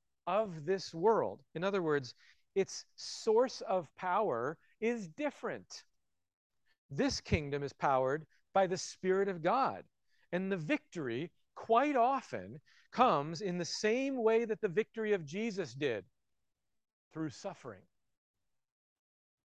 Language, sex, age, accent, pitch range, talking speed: English, male, 40-59, American, 145-195 Hz, 120 wpm